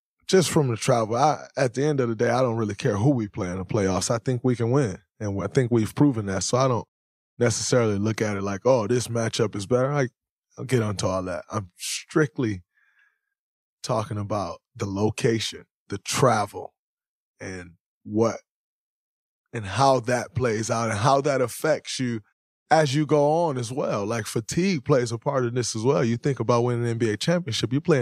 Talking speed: 205 wpm